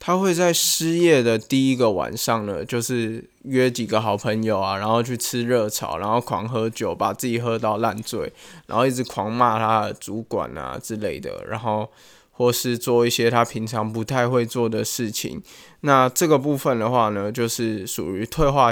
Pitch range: 110-125 Hz